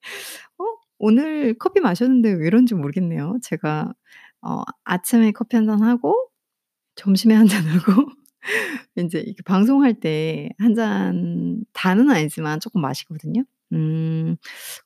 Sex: female